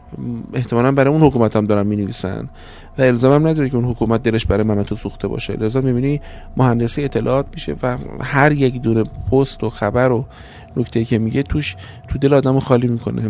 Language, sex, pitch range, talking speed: Persian, male, 110-140 Hz, 185 wpm